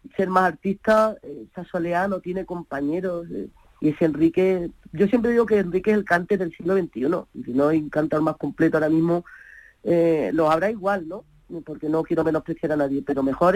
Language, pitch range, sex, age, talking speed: Spanish, 160-195 Hz, female, 30-49, 205 wpm